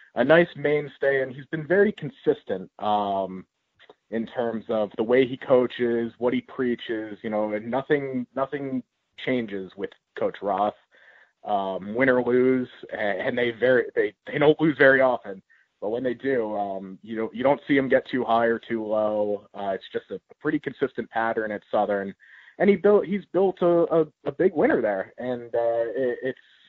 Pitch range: 110-135 Hz